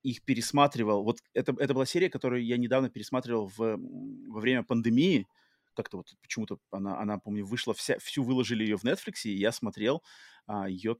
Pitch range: 110-130 Hz